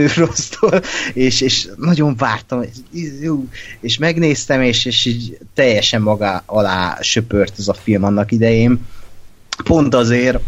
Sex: male